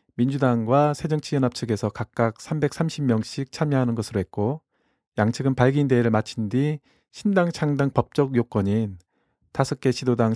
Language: Korean